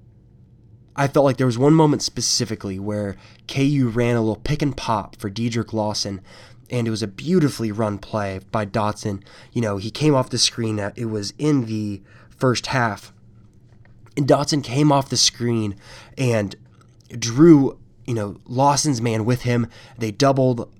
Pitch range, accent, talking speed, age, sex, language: 110-130 Hz, American, 165 wpm, 20-39, male, English